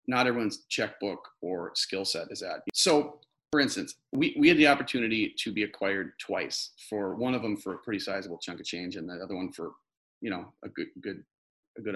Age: 40-59